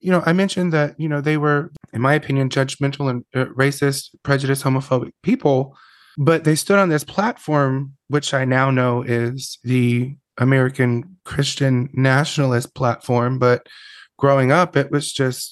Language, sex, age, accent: English, male, 30-49, American